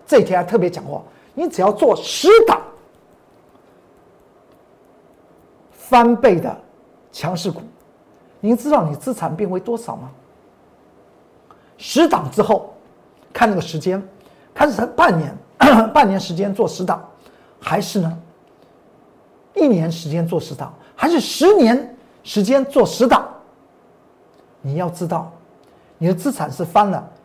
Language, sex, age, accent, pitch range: Chinese, male, 50-69, native, 165-270 Hz